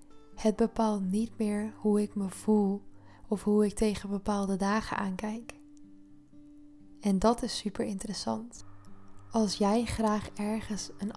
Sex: female